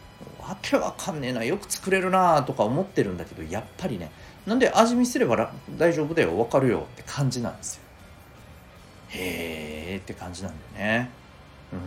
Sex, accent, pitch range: male, native, 90-145 Hz